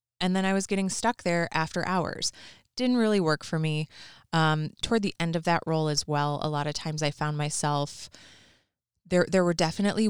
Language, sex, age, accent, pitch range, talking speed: English, female, 20-39, American, 150-175 Hz, 200 wpm